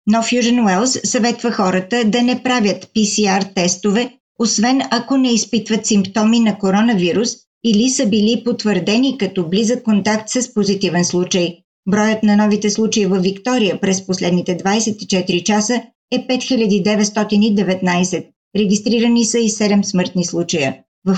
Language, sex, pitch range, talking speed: Bulgarian, female, 195-235 Hz, 130 wpm